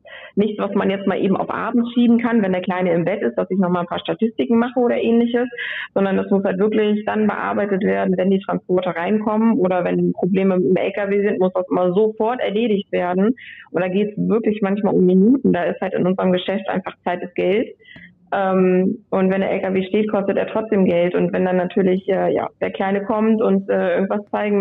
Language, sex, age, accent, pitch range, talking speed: German, female, 20-39, German, 180-210 Hz, 215 wpm